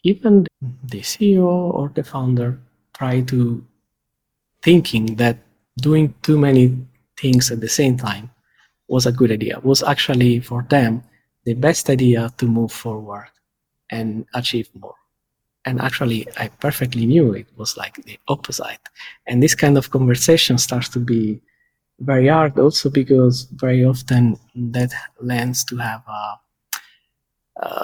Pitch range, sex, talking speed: 120-140 Hz, male, 140 wpm